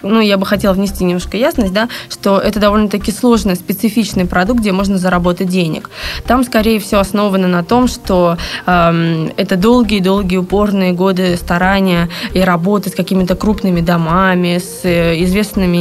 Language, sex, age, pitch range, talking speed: Russian, female, 20-39, 180-210 Hz, 155 wpm